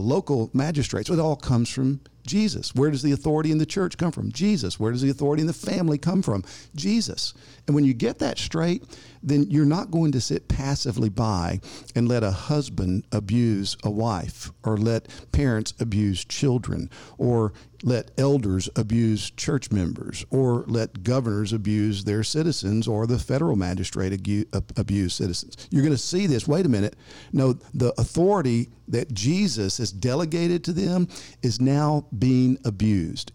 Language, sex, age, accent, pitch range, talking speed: English, male, 50-69, American, 110-145 Hz, 165 wpm